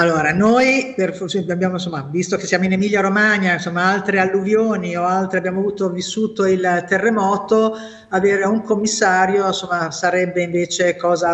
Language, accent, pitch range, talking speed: Italian, native, 160-185 Hz, 145 wpm